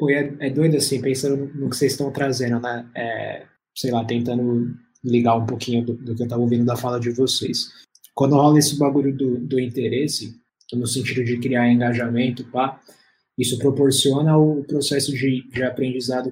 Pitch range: 125-140 Hz